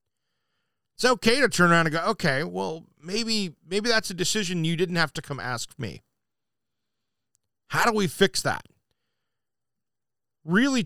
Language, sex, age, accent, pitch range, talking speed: English, male, 40-59, American, 140-200 Hz, 150 wpm